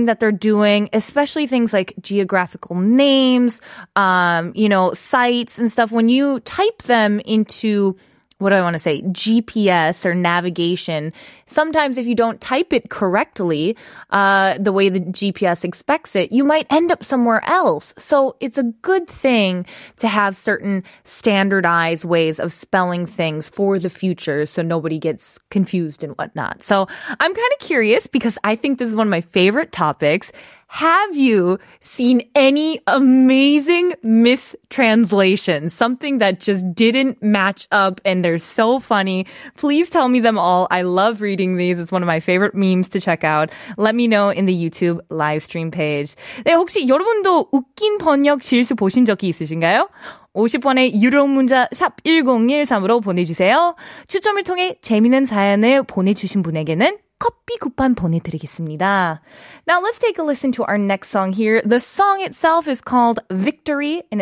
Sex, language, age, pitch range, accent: female, Korean, 20-39, 185-265 Hz, American